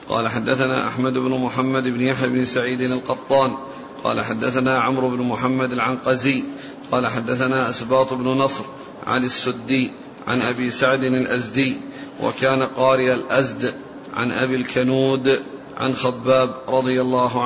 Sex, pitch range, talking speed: male, 130-140 Hz, 125 wpm